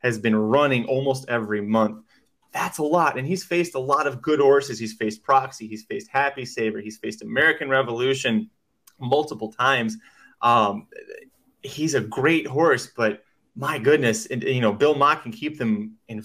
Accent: American